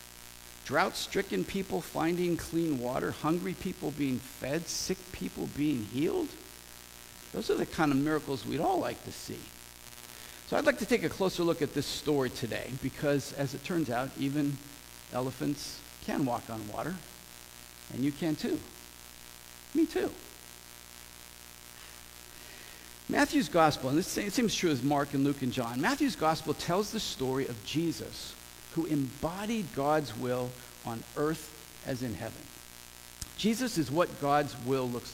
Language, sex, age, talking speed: English, male, 50-69, 150 wpm